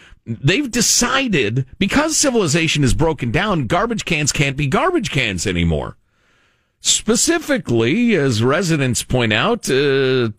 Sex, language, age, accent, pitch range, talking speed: male, English, 50-69, American, 120-195 Hz, 115 wpm